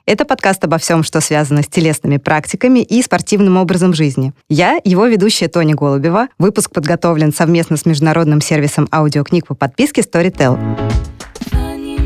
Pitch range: 155-185 Hz